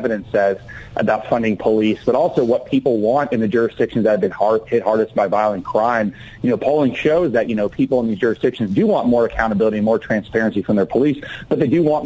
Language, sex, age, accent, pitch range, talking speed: English, male, 40-59, American, 105-115 Hz, 235 wpm